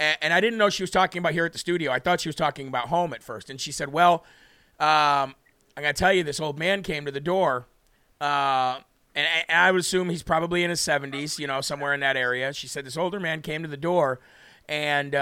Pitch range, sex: 140-185 Hz, male